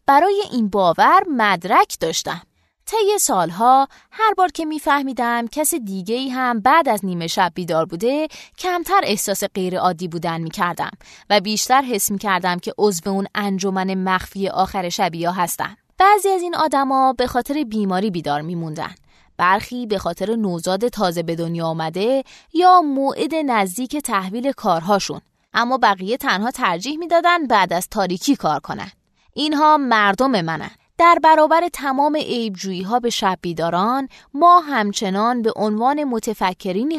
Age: 20-39